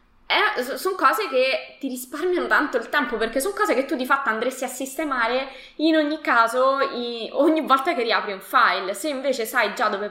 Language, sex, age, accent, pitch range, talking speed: Italian, female, 20-39, native, 210-270 Hz, 195 wpm